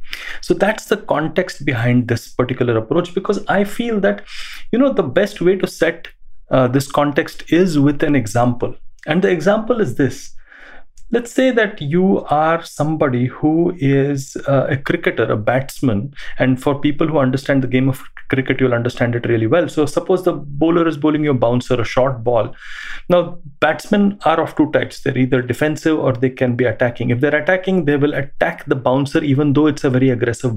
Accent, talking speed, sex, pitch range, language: Indian, 190 wpm, male, 130-165 Hz, English